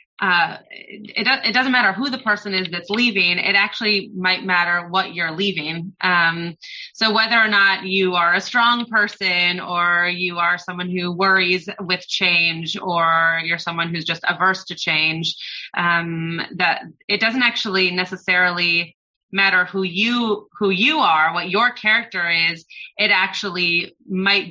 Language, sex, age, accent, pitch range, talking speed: English, female, 30-49, American, 175-210 Hz, 155 wpm